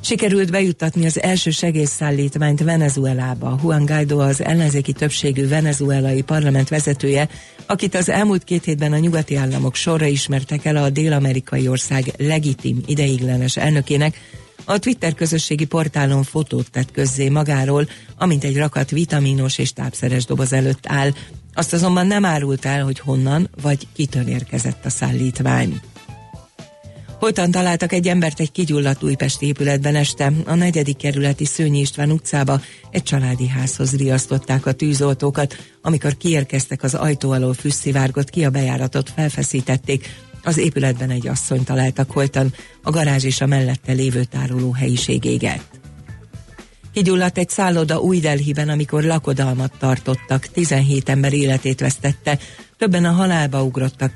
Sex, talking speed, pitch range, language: female, 135 wpm, 130-155 Hz, Hungarian